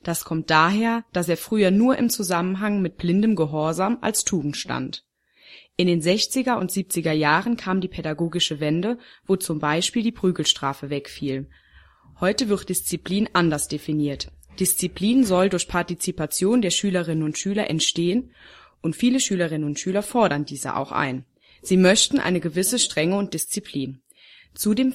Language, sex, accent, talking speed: German, female, German, 150 wpm